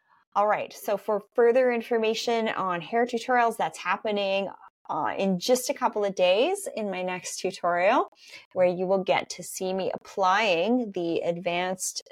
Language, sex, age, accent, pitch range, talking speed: English, female, 20-39, American, 175-235 Hz, 160 wpm